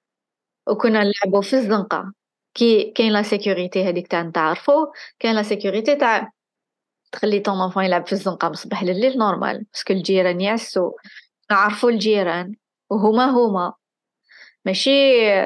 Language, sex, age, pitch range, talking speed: Arabic, female, 20-39, 185-230 Hz, 125 wpm